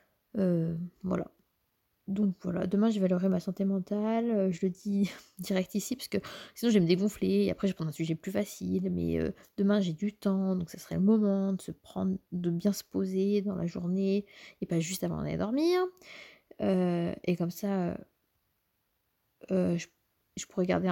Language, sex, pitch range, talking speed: French, female, 180-230 Hz, 190 wpm